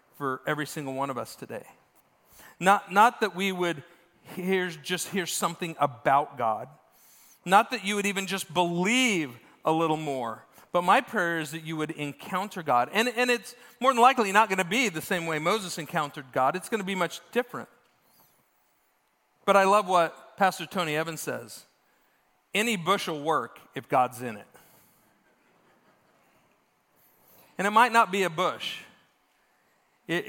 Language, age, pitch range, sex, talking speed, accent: English, 40-59, 155-215 Hz, male, 165 wpm, American